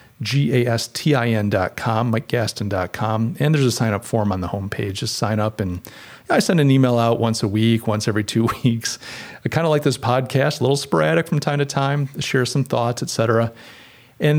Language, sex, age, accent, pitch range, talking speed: English, male, 40-59, American, 110-140 Hz, 200 wpm